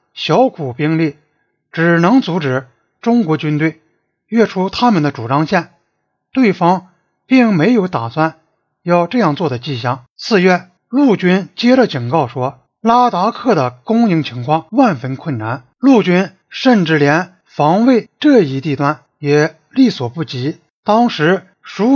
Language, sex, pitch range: Chinese, male, 145-220 Hz